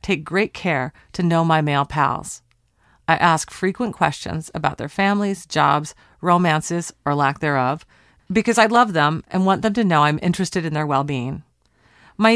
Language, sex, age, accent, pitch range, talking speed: English, female, 40-59, American, 155-200 Hz, 170 wpm